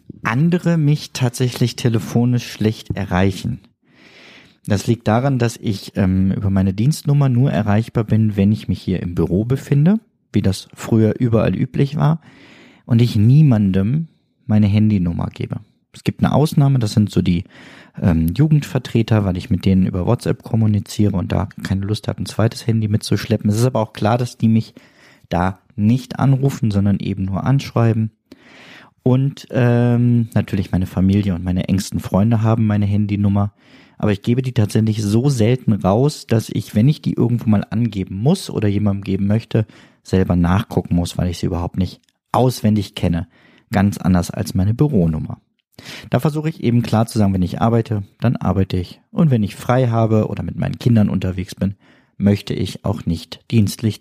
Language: German